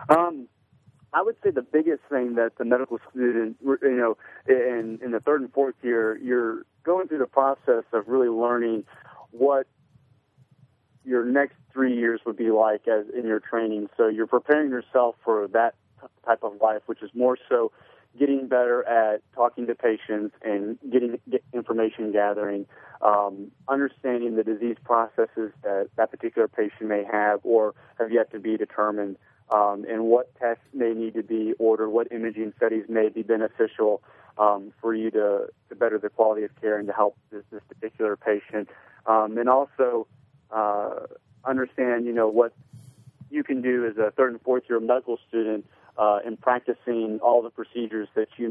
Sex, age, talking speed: male, 30-49, 170 wpm